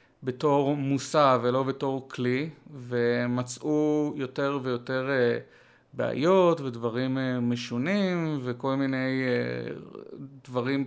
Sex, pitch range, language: male, 125-160 Hz, Hebrew